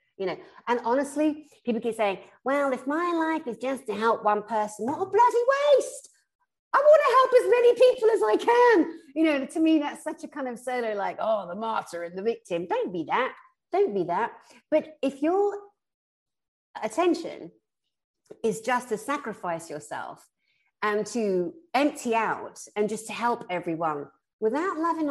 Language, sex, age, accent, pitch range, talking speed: English, female, 50-69, British, 185-290 Hz, 175 wpm